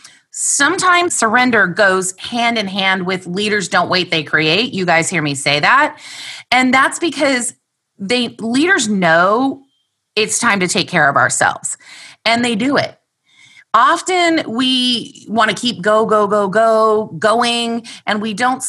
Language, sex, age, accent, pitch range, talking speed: English, female, 30-49, American, 190-275 Hz, 155 wpm